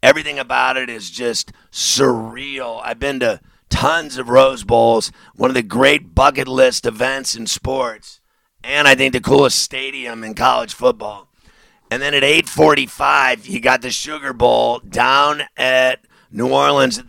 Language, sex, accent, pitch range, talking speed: English, male, American, 120-140 Hz, 160 wpm